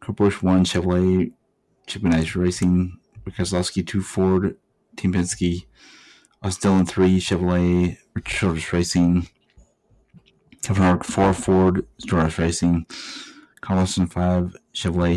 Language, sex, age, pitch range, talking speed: English, male, 30-49, 85-95 Hz, 95 wpm